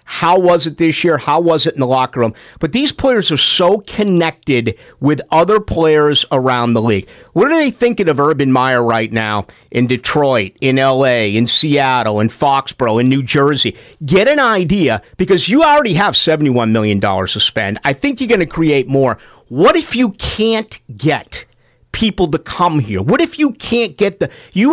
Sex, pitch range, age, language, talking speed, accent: male, 135-210 Hz, 50-69, English, 185 wpm, American